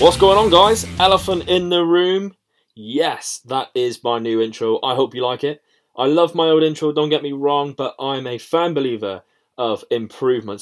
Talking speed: 200 wpm